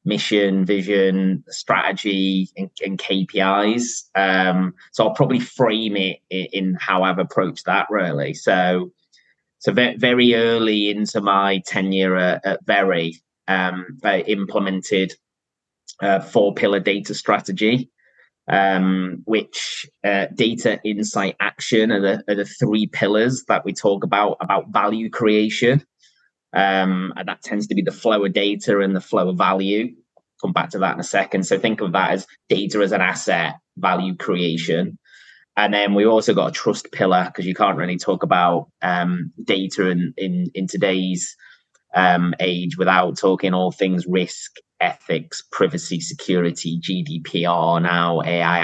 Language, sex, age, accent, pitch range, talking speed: English, male, 20-39, British, 90-105 Hz, 150 wpm